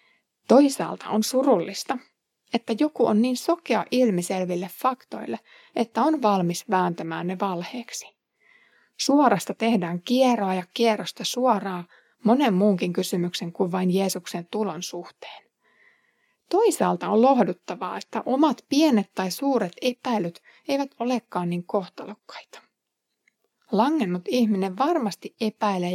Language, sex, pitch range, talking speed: Finnish, female, 180-250 Hz, 110 wpm